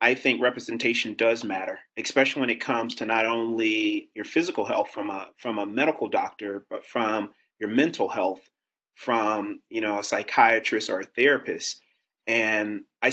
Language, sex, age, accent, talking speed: English, male, 30-49, American, 165 wpm